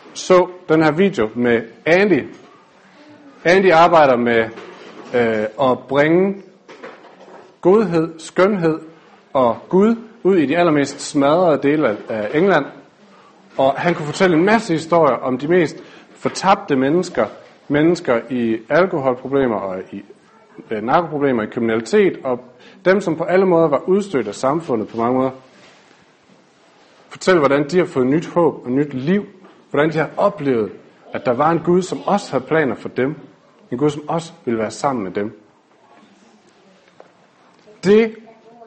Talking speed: 145 wpm